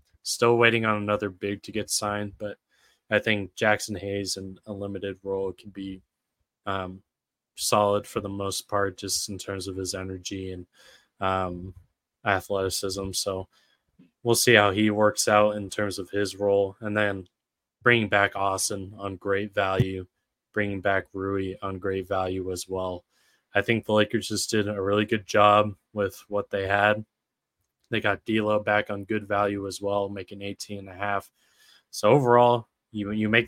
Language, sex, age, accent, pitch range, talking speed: English, male, 20-39, American, 95-105 Hz, 170 wpm